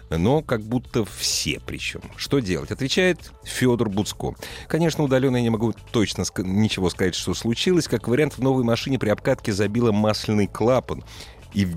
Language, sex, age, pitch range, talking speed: Russian, male, 30-49, 100-135 Hz, 165 wpm